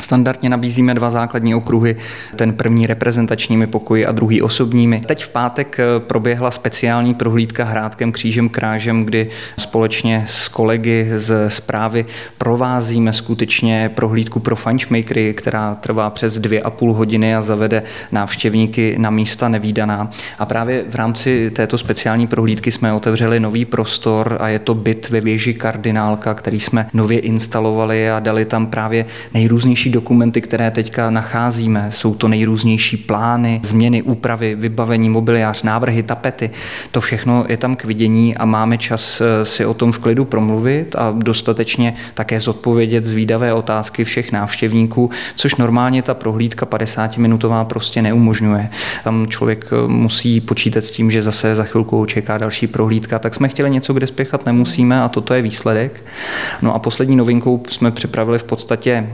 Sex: male